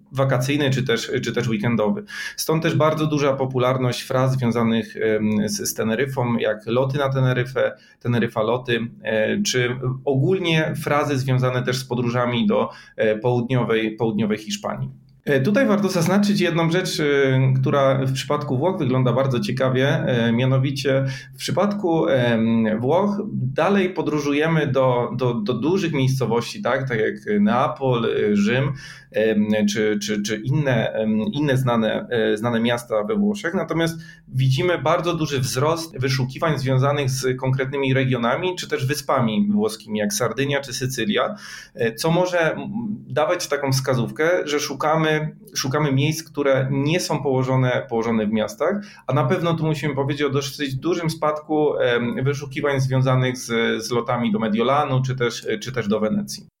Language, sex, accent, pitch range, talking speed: Polish, male, native, 120-155 Hz, 135 wpm